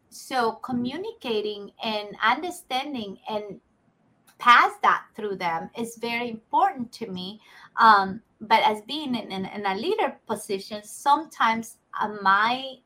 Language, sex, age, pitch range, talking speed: English, female, 30-49, 205-250 Hz, 125 wpm